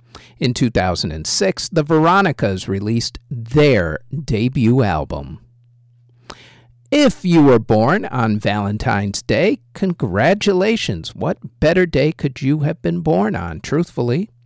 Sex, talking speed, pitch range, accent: male, 110 wpm, 115-155 Hz, American